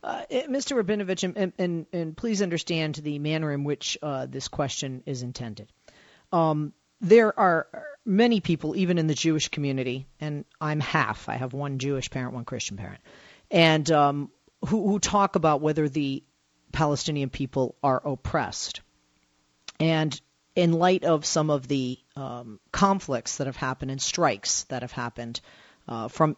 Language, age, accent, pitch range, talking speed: English, 40-59, American, 130-165 Hz, 155 wpm